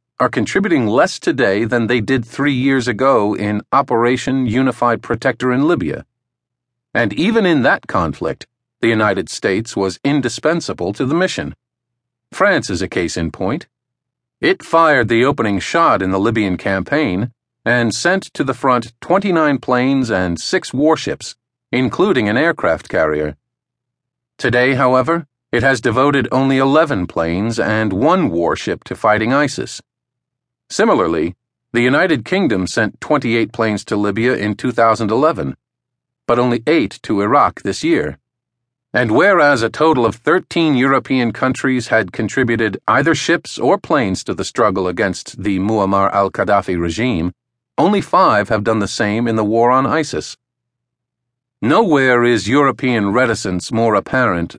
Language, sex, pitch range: English, male, 110-130 Hz